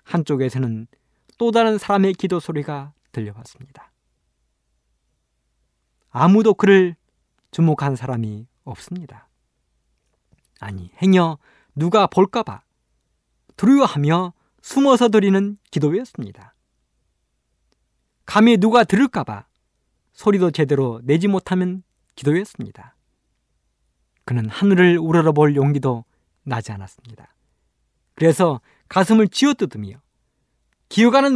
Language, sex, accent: Korean, male, native